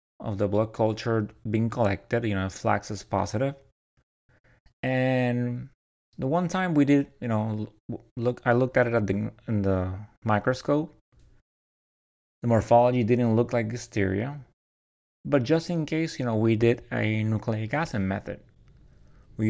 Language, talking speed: English, 150 wpm